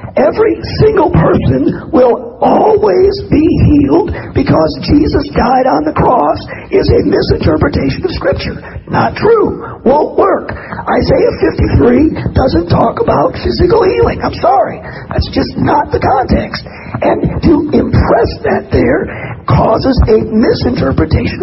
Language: English